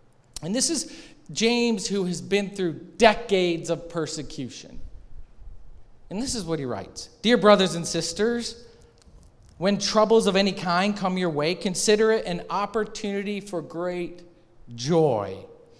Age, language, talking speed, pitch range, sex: 40-59, English, 135 wpm, 135-200 Hz, male